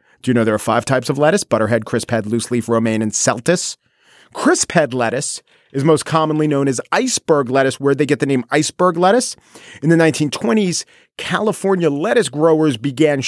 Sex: male